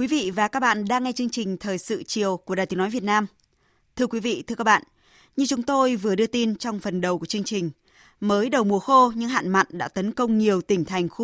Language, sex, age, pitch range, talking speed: Vietnamese, female, 20-39, 190-245 Hz, 265 wpm